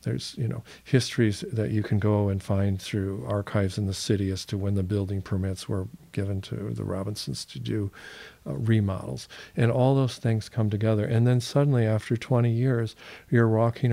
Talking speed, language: 190 wpm, English